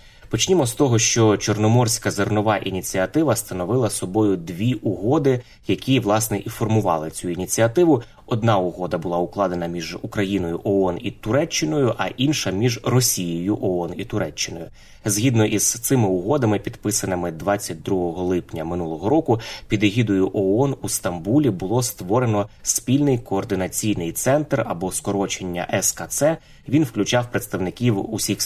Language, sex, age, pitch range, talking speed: Ukrainian, male, 20-39, 95-120 Hz, 125 wpm